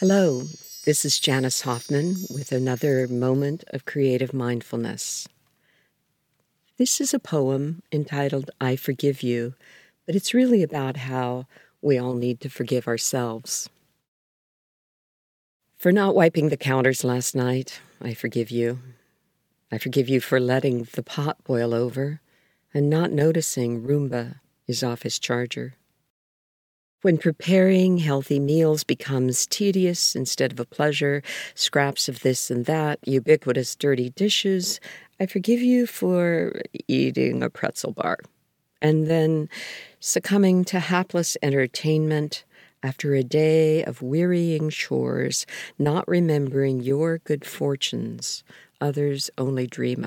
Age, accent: 50-69, American